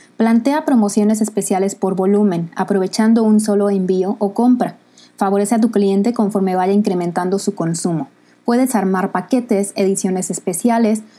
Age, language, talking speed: 20-39, Spanish, 135 wpm